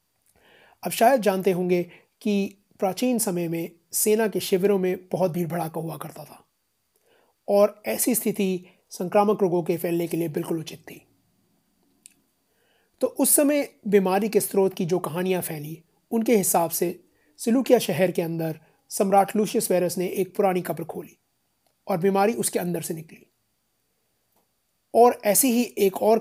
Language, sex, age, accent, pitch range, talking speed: Hindi, male, 30-49, native, 175-210 Hz, 150 wpm